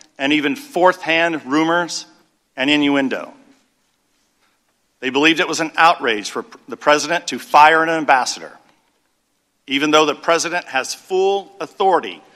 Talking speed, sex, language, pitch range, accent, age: 130 wpm, male, English, 150-175 Hz, American, 50-69